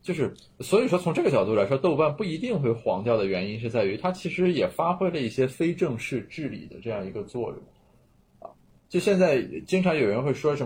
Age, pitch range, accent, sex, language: 20-39, 115-155 Hz, native, male, Chinese